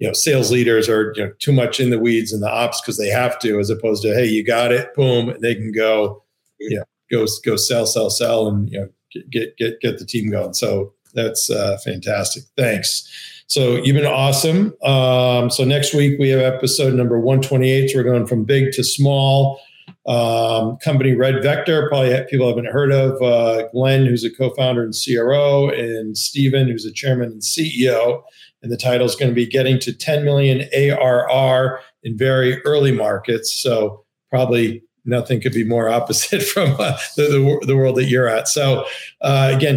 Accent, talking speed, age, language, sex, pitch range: American, 195 wpm, 40-59, English, male, 115-135 Hz